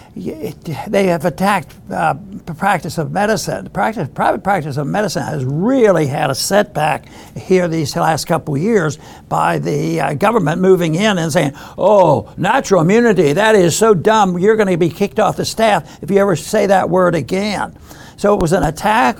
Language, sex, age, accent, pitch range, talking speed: English, male, 60-79, American, 160-200 Hz, 180 wpm